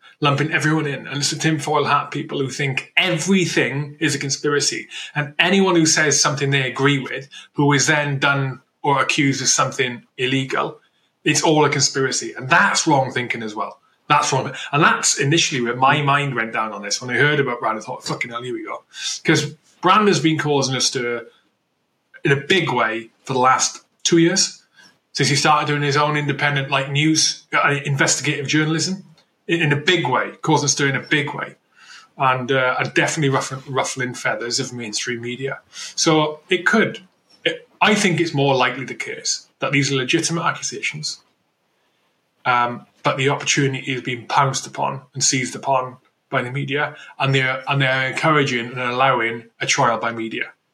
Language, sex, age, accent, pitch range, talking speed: English, male, 20-39, British, 130-155 Hz, 185 wpm